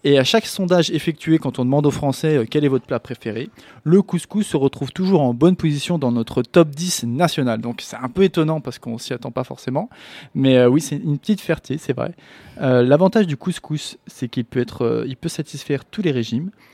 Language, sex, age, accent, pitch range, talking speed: French, male, 20-39, French, 130-180 Hz, 235 wpm